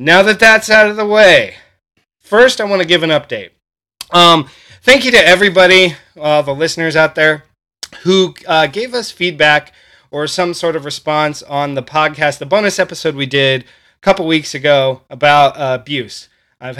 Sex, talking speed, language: male, 180 wpm, English